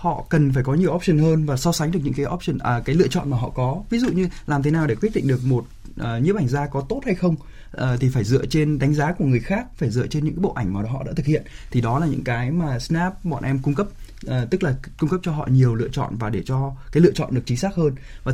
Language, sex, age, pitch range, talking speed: Vietnamese, male, 20-39, 120-155 Hz, 290 wpm